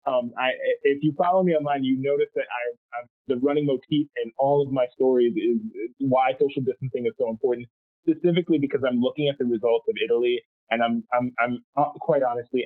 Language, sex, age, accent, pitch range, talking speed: English, male, 20-39, American, 115-145 Hz, 180 wpm